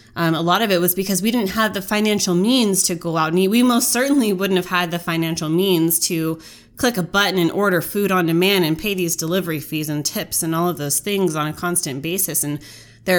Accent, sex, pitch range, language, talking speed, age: American, female, 165-210 Hz, English, 245 wpm, 20-39